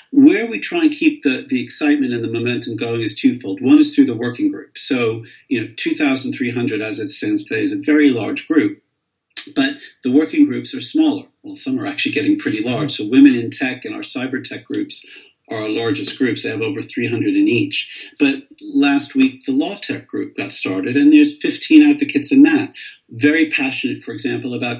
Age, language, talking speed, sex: 50-69, English, 205 wpm, male